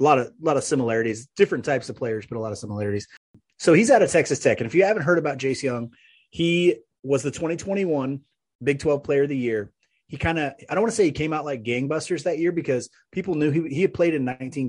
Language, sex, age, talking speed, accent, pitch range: English, male, 30-49, 260 wpm, American, 125-170 Hz